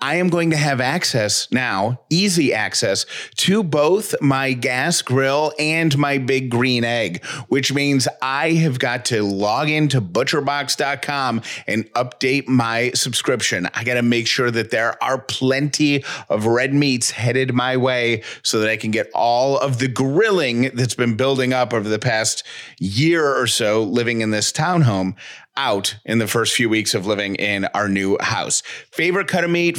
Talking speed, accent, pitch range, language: 175 wpm, American, 115-140 Hz, English